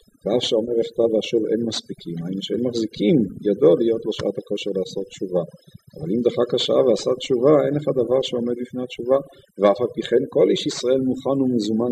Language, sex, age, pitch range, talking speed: Hebrew, male, 50-69, 110-140 Hz, 175 wpm